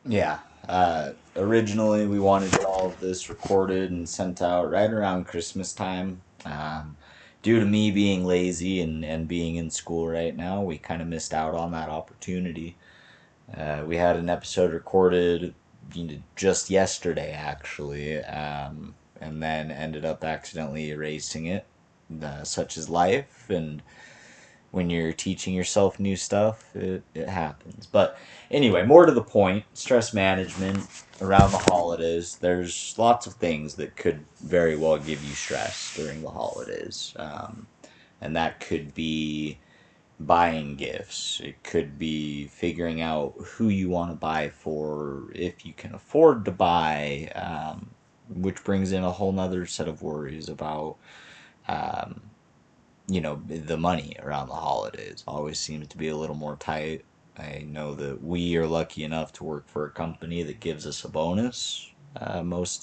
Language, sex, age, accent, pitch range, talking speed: English, male, 30-49, American, 75-95 Hz, 160 wpm